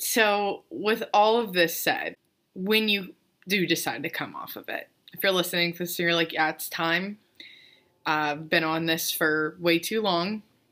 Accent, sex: American, female